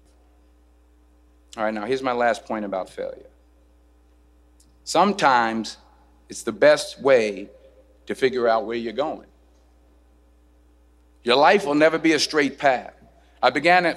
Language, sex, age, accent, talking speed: English, male, 50-69, American, 135 wpm